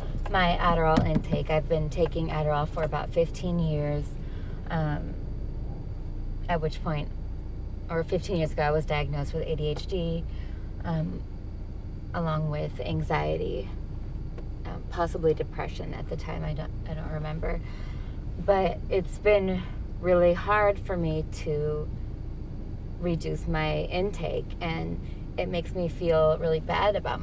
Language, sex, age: English, female, 20-39